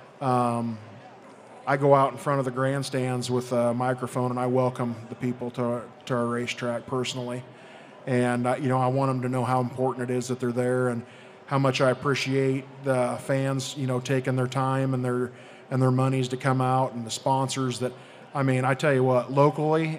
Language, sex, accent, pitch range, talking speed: English, male, American, 125-135 Hz, 210 wpm